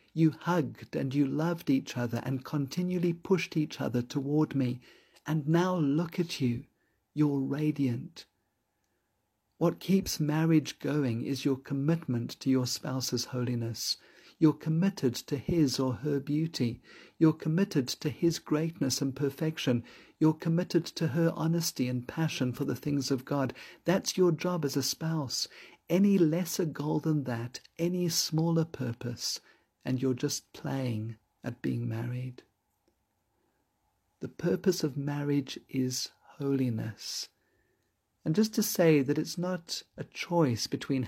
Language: English